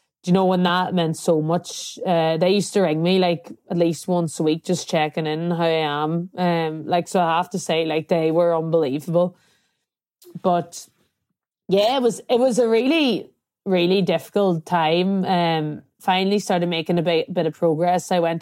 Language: English